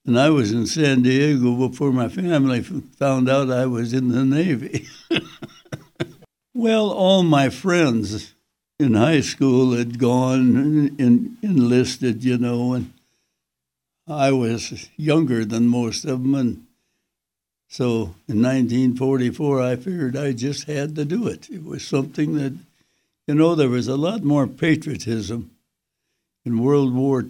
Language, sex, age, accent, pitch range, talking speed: English, male, 60-79, American, 115-140 Hz, 140 wpm